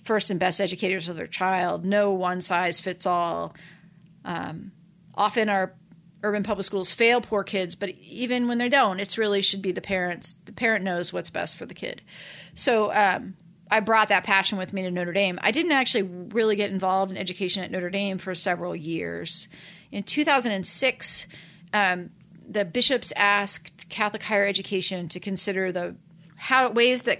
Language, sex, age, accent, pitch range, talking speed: English, female, 40-59, American, 170-200 Hz, 185 wpm